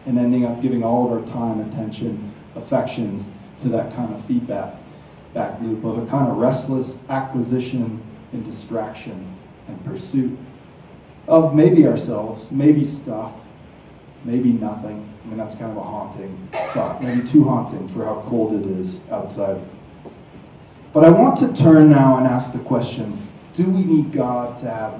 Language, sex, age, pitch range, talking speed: English, male, 30-49, 120-155 Hz, 160 wpm